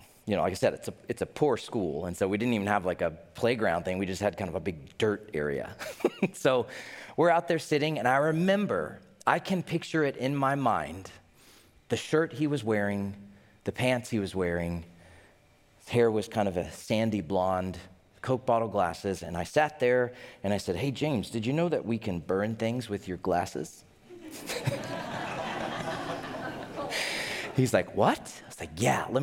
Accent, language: American, English